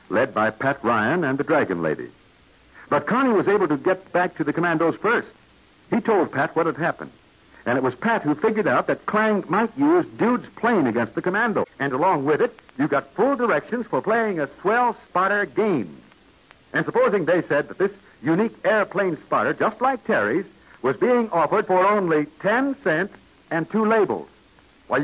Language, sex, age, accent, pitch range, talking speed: English, male, 60-79, American, 190-245 Hz, 185 wpm